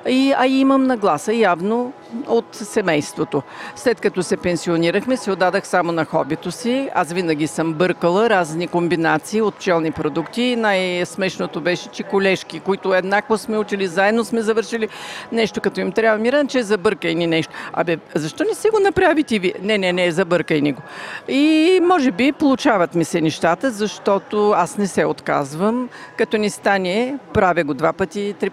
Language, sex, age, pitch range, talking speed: Bulgarian, female, 50-69, 170-220 Hz, 170 wpm